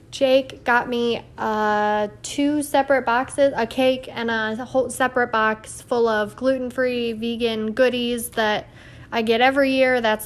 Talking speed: 145 wpm